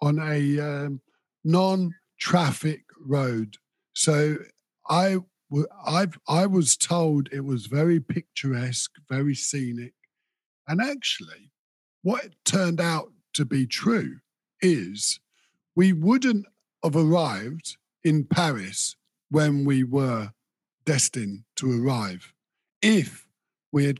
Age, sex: 50-69, male